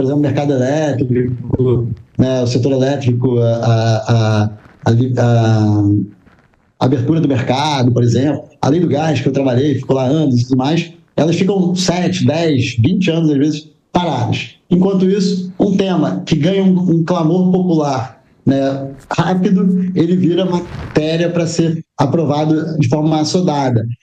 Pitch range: 135-185 Hz